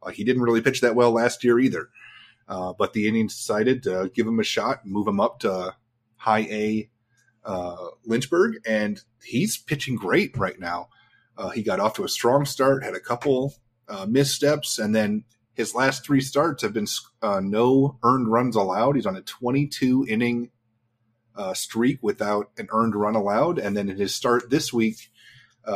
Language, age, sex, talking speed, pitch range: English, 30-49, male, 180 wpm, 105-130 Hz